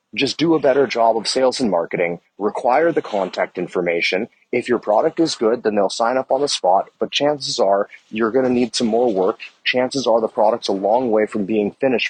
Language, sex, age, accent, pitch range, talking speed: English, male, 30-49, American, 105-140 Hz, 225 wpm